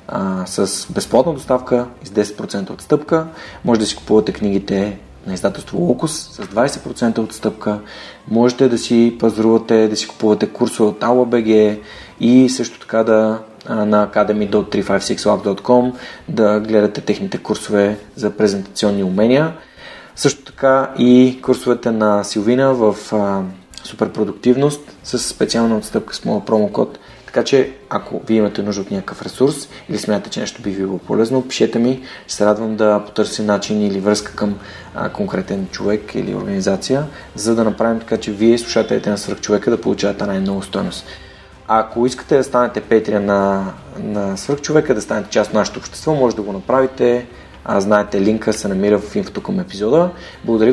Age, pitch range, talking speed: 30-49, 105-125 Hz, 155 wpm